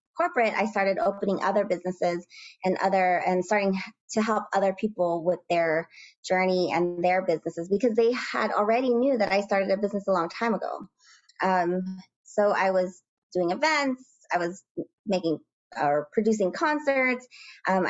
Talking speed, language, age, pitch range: 160 wpm, English, 20-39, 180-215 Hz